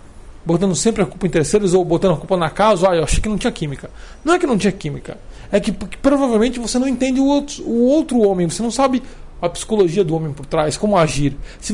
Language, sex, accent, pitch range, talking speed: Portuguese, male, Brazilian, 165-255 Hz, 245 wpm